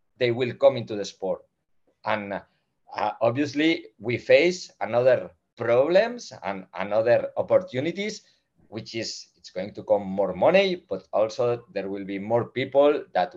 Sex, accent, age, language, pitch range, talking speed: male, Spanish, 50-69, English, 110-175 Hz, 145 wpm